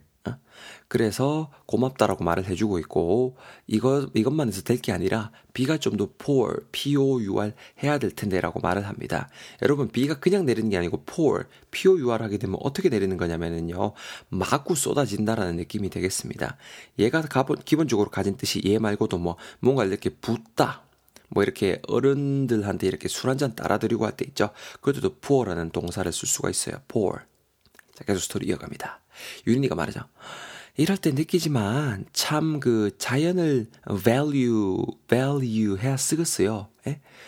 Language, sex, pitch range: Korean, male, 100-135 Hz